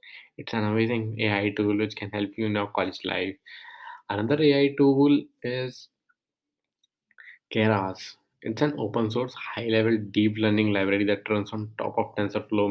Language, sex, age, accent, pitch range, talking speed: Hindi, male, 20-39, native, 105-125 Hz, 155 wpm